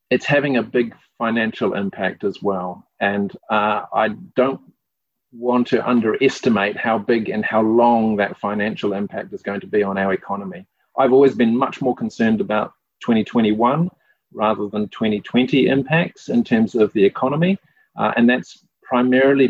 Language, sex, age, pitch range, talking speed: English, male, 40-59, 105-135 Hz, 155 wpm